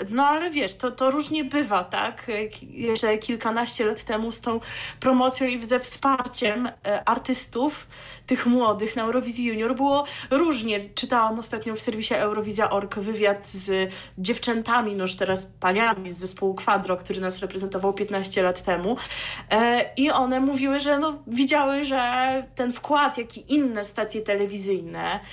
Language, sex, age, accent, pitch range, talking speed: Polish, female, 20-39, native, 205-255 Hz, 135 wpm